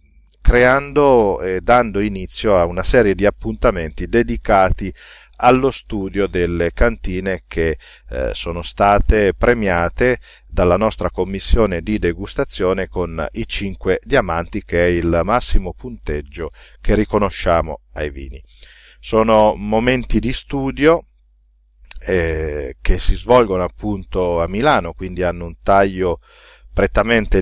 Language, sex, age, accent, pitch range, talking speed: Italian, male, 40-59, native, 85-105 Hz, 115 wpm